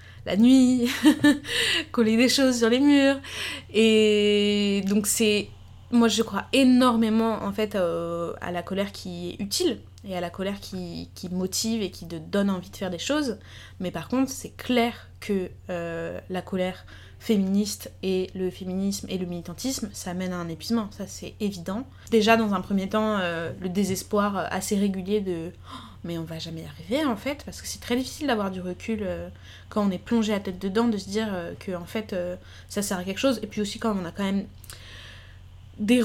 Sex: female